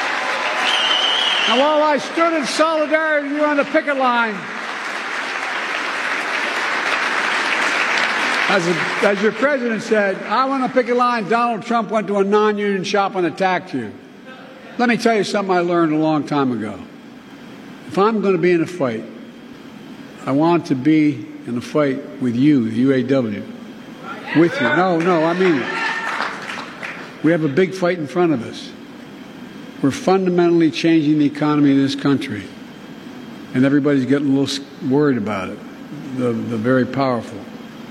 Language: English